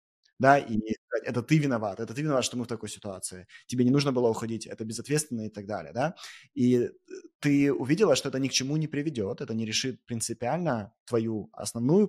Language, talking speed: Russian, 200 wpm